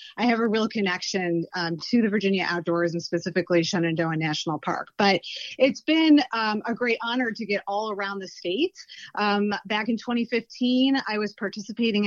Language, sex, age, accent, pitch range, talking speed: English, female, 30-49, American, 185-230 Hz, 175 wpm